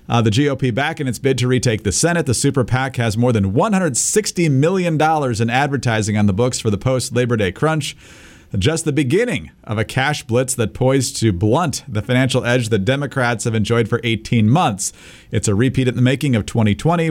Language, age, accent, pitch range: English, 40-59, American, 110-140 Hz